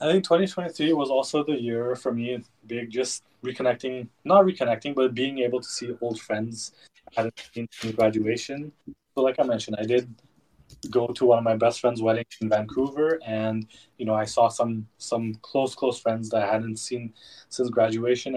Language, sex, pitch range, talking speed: English, male, 115-130 Hz, 190 wpm